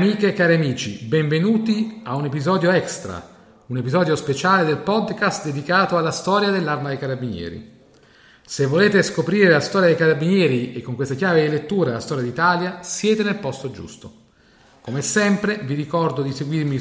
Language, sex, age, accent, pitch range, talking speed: Italian, male, 40-59, native, 135-185 Hz, 165 wpm